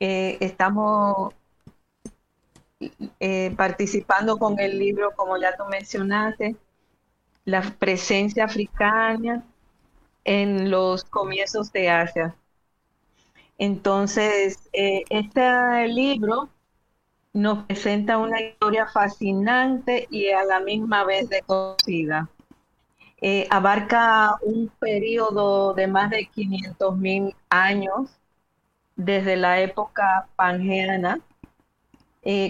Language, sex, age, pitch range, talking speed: Spanish, female, 40-59, 190-220 Hz, 90 wpm